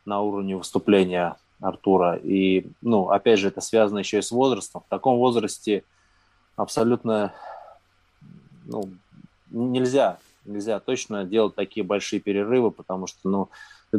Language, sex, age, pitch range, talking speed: English, male, 20-39, 95-110 Hz, 130 wpm